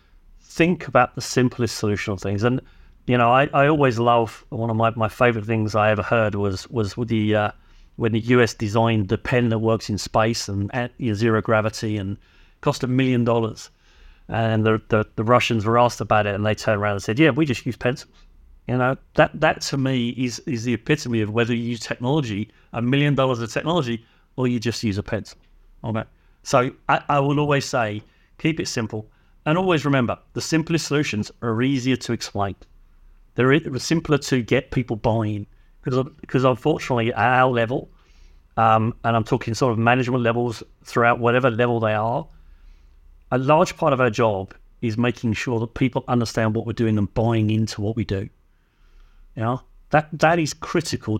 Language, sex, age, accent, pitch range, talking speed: English, male, 40-59, British, 105-130 Hz, 190 wpm